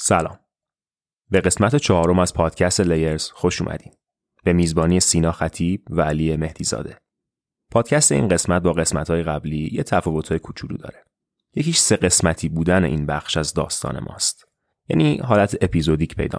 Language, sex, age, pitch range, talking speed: Persian, male, 30-49, 80-95 Hz, 145 wpm